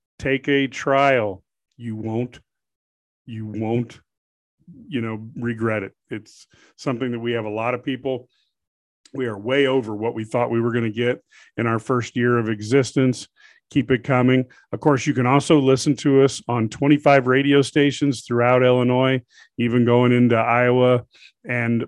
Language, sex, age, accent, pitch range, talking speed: English, male, 40-59, American, 115-135 Hz, 165 wpm